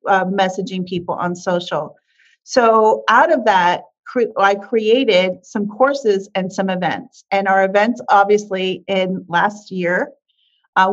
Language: English